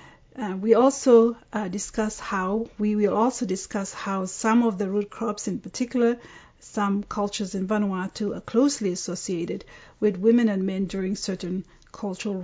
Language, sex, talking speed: English, female, 155 wpm